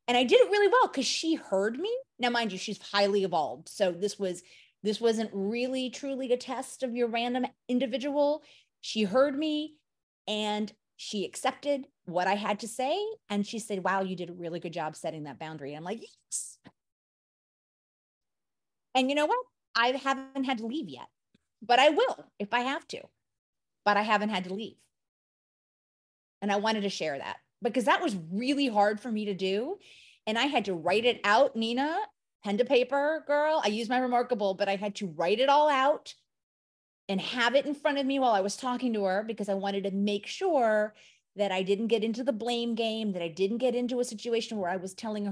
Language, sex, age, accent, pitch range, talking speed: English, female, 30-49, American, 200-260 Hz, 205 wpm